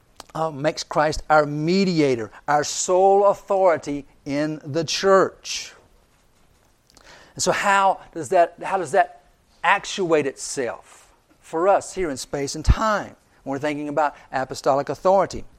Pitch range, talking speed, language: 145-180 Hz, 130 wpm, English